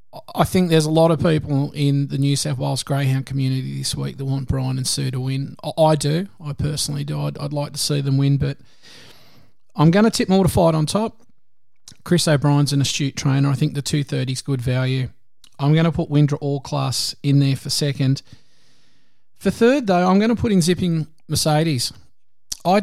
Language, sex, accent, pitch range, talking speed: English, male, Australian, 135-150 Hz, 205 wpm